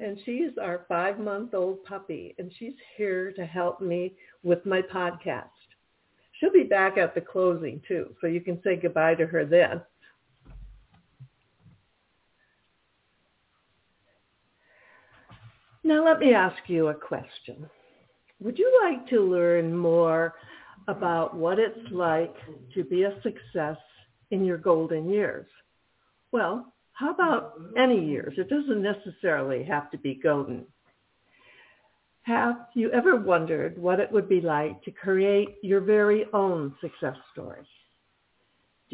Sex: female